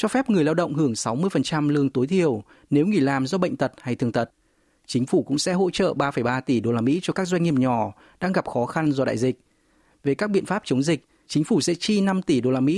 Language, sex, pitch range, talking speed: Vietnamese, male, 130-175 Hz, 270 wpm